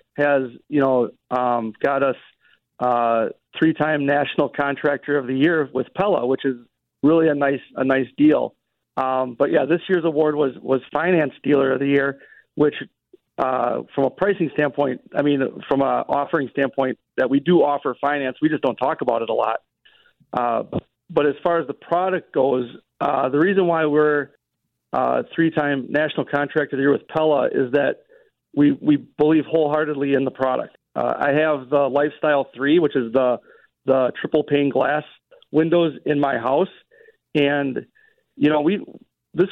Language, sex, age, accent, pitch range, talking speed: English, male, 40-59, American, 135-155 Hz, 170 wpm